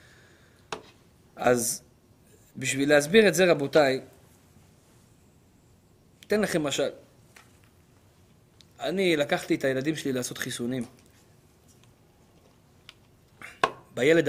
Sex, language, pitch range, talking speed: male, Hebrew, 130-195 Hz, 70 wpm